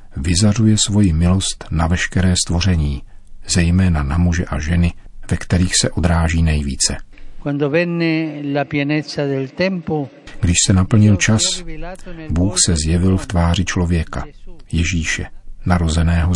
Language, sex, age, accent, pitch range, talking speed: Czech, male, 50-69, native, 80-95 Hz, 105 wpm